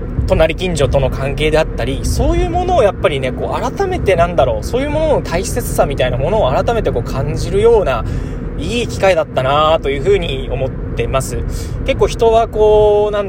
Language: Japanese